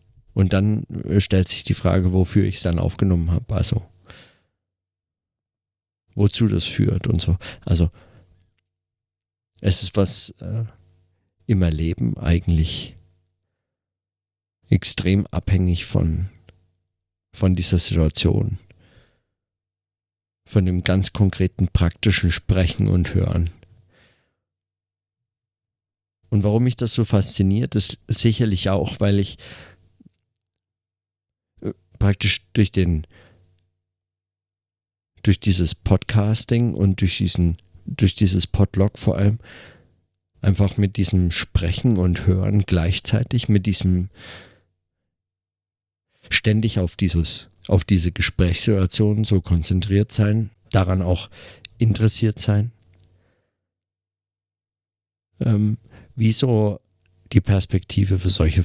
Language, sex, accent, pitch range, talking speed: German, male, German, 90-105 Hz, 95 wpm